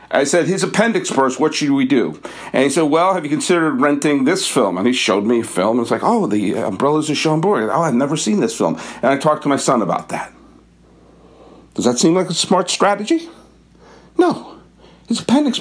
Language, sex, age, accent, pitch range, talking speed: English, male, 50-69, American, 150-230 Hz, 220 wpm